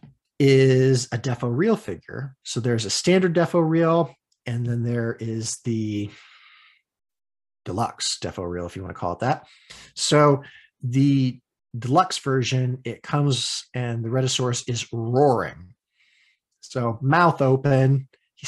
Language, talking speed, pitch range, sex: English, 135 wpm, 110-140 Hz, male